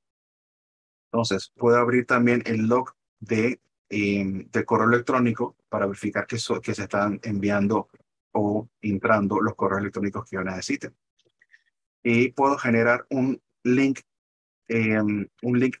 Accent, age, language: Venezuelan, 30-49, Spanish